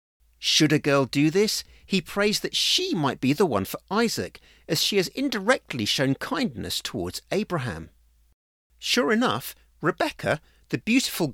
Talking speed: 150 wpm